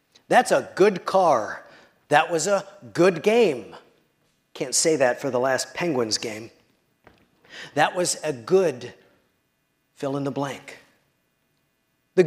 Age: 40-59